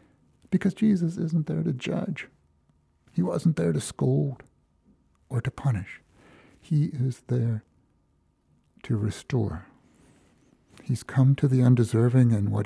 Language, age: English, 60-79